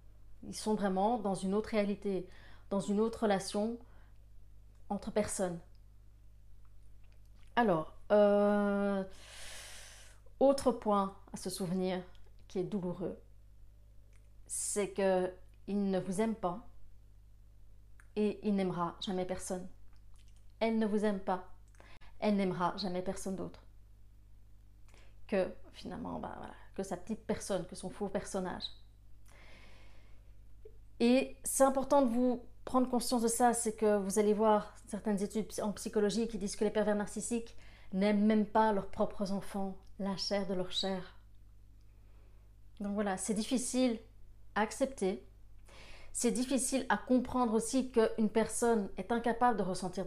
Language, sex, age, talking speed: French, female, 30-49, 130 wpm